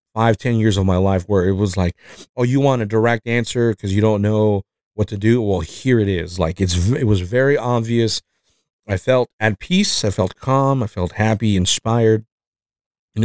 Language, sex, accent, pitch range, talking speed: English, male, American, 95-120 Hz, 205 wpm